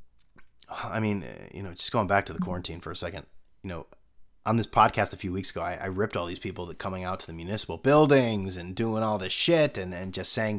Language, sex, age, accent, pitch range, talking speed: English, male, 30-49, American, 95-145 Hz, 250 wpm